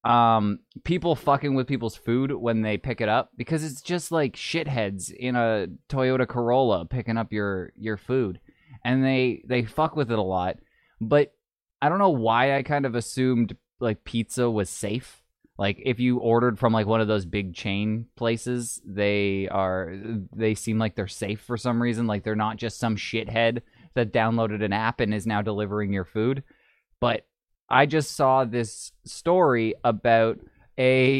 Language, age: English, 20-39